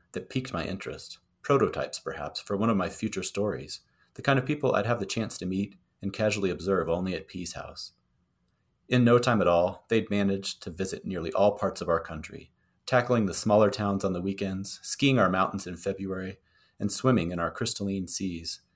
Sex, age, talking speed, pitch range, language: male, 30-49, 200 wpm, 85-105 Hz, English